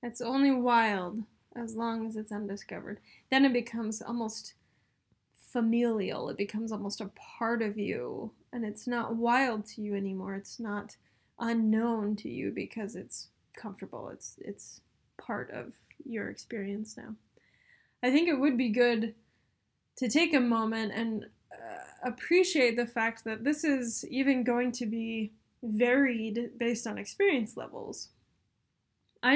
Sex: female